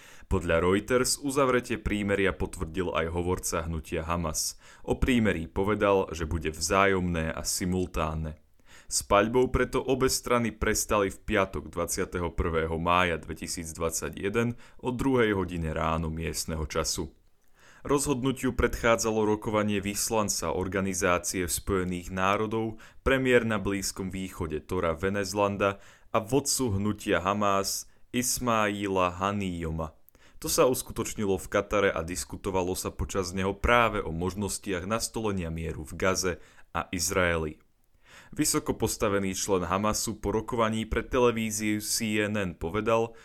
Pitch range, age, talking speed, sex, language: 85-110 Hz, 30-49, 110 wpm, male, Slovak